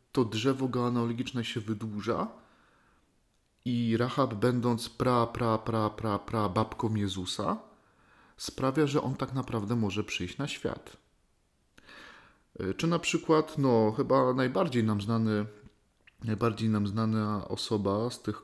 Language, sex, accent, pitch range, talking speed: Polish, male, native, 105-120 Hz, 125 wpm